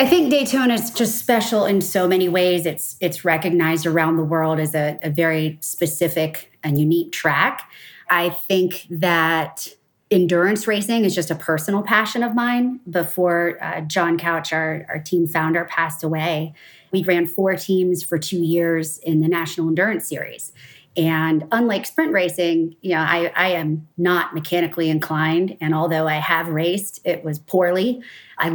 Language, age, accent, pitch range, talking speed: English, 30-49, American, 160-185 Hz, 165 wpm